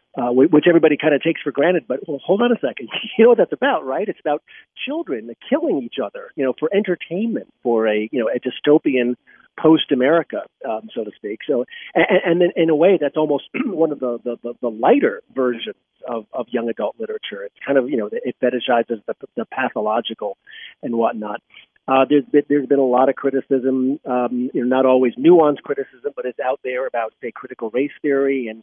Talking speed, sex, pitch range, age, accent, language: 200 wpm, male, 125-155 Hz, 40-59, American, English